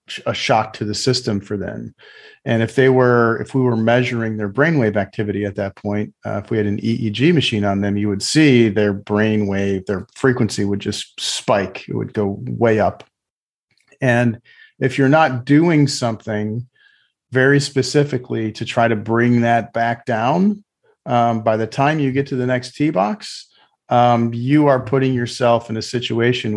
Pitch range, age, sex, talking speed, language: 110-130 Hz, 40-59, male, 180 wpm, English